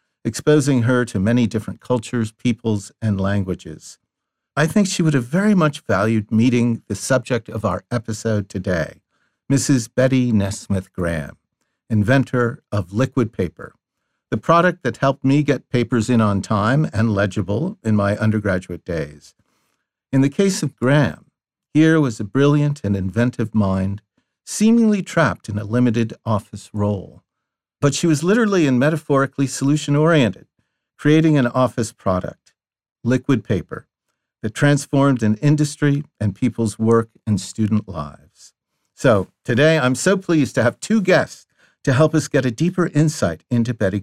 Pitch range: 105-145 Hz